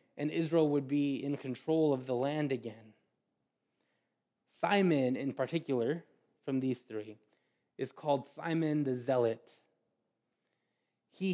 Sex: male